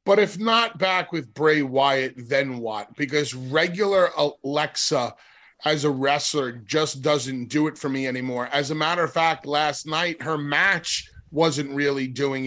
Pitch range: 145-170 Hz